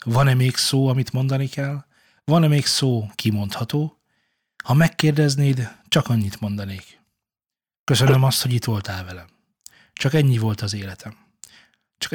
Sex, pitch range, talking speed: male, 110-140 Hz, 135 wpm